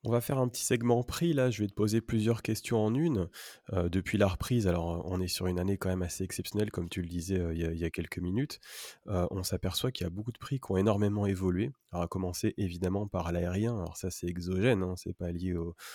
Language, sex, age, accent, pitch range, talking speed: French, male, 30-49, French, 90-105 Hz, 260 wpm